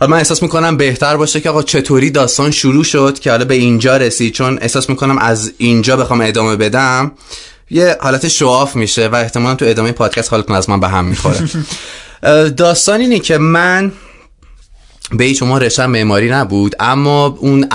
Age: 20-39